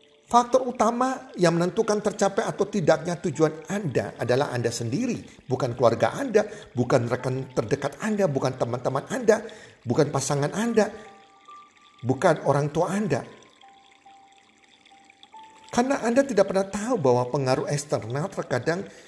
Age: 50-69